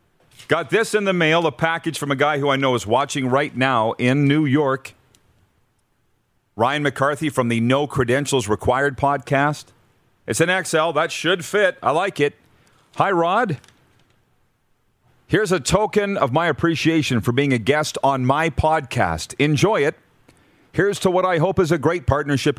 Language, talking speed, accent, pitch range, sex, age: English, 165 wpm, American, 115-150 Hz, male, 40-59